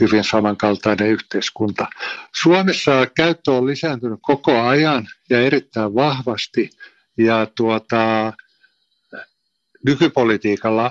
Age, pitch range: 60-79, 110-130 Hz